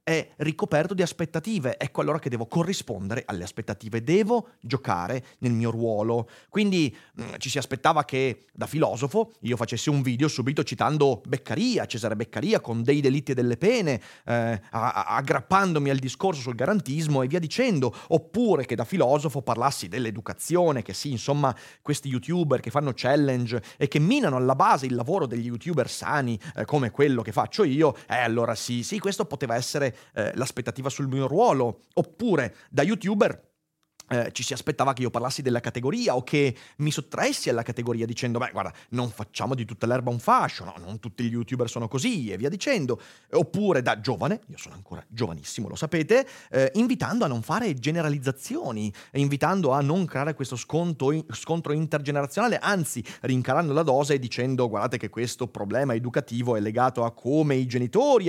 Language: Italian